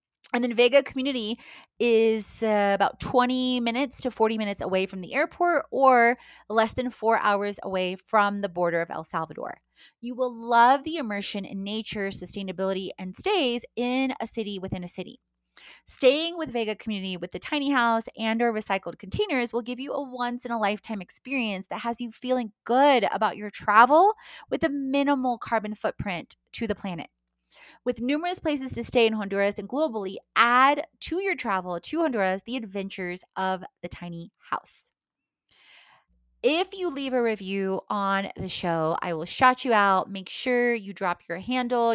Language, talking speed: English, 175 wpm